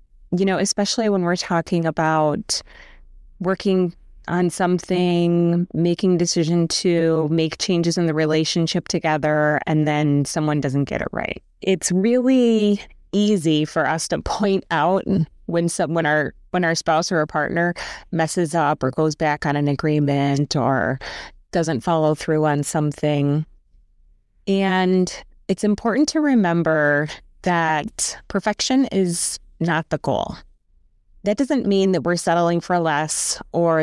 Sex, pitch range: female, 155-185 Hz